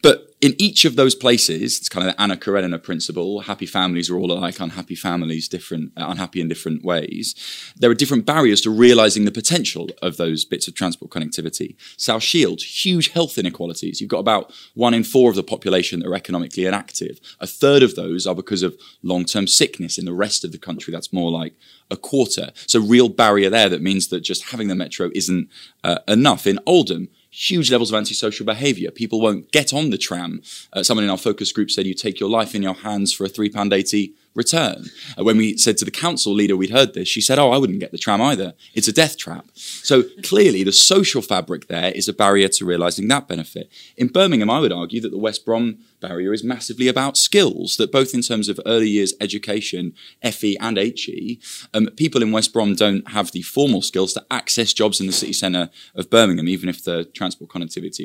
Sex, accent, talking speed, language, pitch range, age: male, British, 215 wpm, English, 90-115 Hz, 20-39